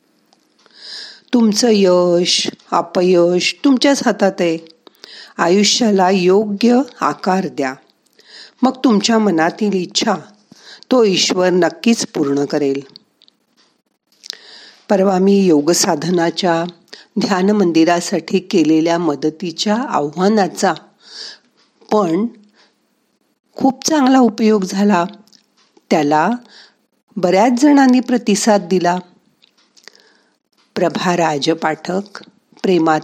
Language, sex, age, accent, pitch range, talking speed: Marathi, female, 50-69, native, 170-220 Hz, 70 wpm